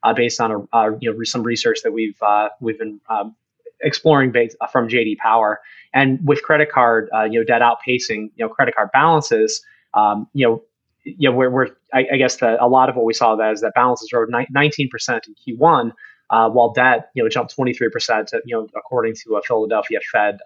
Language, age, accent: English, 20-39, American